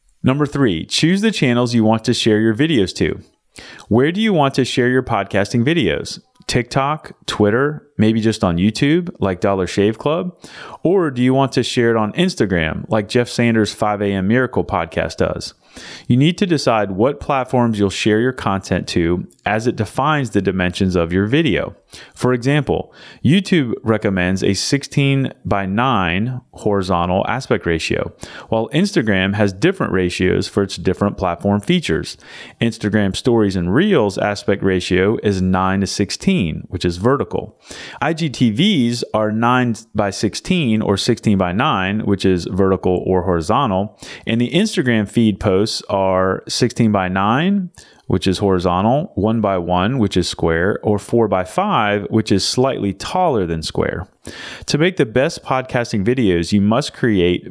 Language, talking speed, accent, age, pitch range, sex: English, 160 wpm, American, 30-49, 95-130 Hz, male